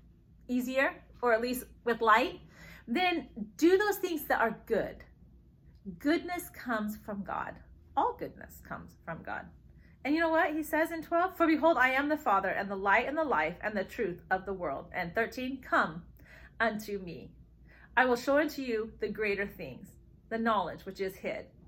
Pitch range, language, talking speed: 205-320 Hz, English, 185 wpm